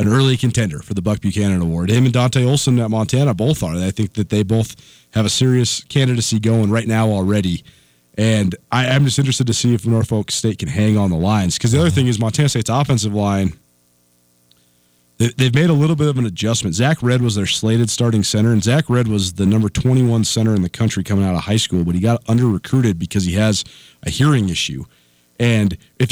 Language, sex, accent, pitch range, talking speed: English, male, American, 105-130 Hz, 225 wpm